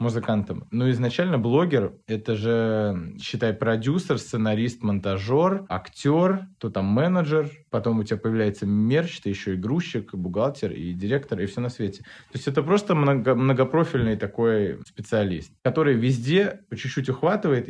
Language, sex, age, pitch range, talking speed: Russian, male, 20-39, 105-140 Hz, 140 wpm